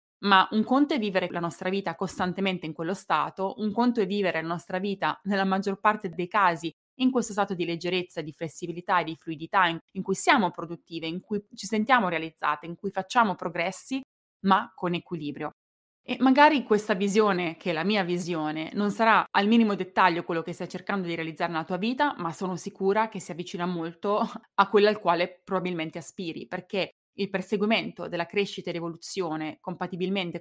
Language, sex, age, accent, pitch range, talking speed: Italian, female, 20-39, native, 170-210 Hz, 185 wpm